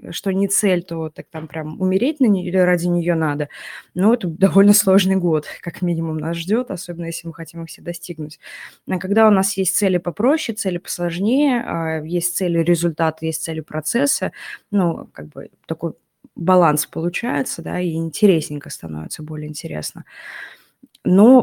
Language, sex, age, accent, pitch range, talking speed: Russian, female, 20-39, native, 165-205 Hz, 150 wpm